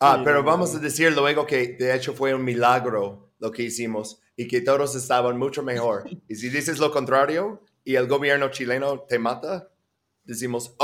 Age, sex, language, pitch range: 30-49, male, Spanish, 120-160 Hz